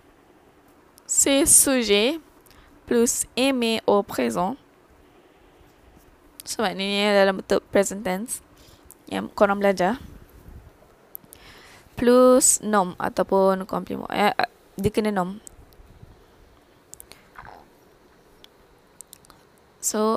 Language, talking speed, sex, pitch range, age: Malay, 70 wpm, female, 195-225 Hz, 10-29